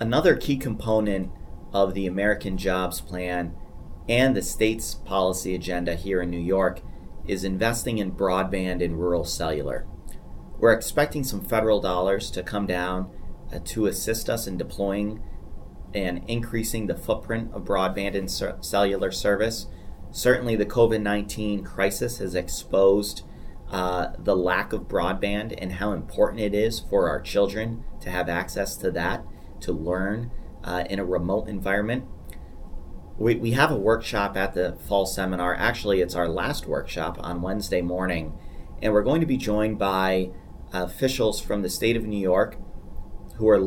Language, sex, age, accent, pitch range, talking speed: English, male, 30-49, American, 90-105 Hz, 155 wpm